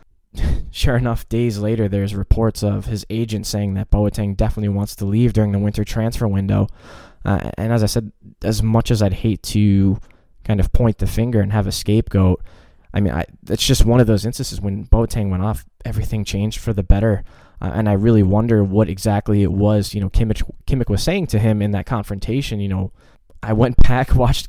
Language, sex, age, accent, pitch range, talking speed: English, male, 20-39, American, 100-115 Hz, 205 wpm